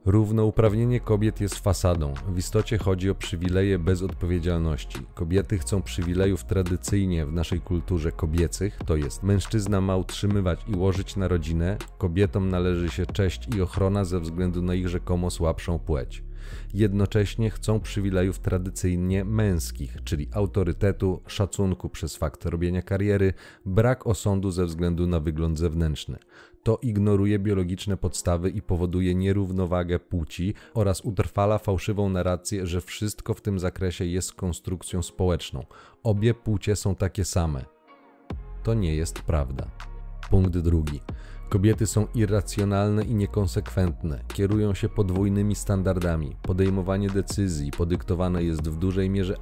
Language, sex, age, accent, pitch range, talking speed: Polish, male, 30-49, native, 85-100 Hz, 130 wpm